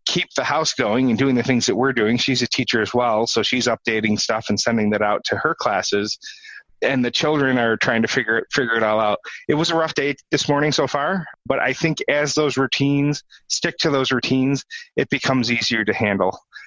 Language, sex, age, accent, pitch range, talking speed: English, male, 30-49, American, 110-135 Hz, 225 wpm